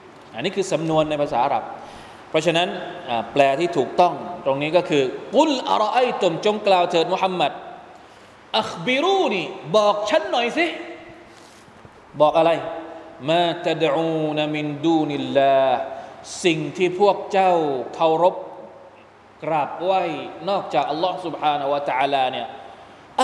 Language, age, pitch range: Thai, 20-39, 155-230 Hz